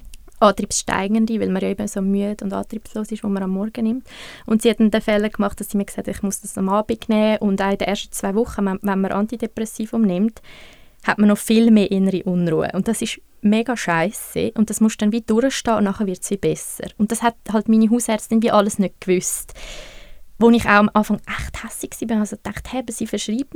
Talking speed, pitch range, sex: 230 wpm, 200-225 Hz, female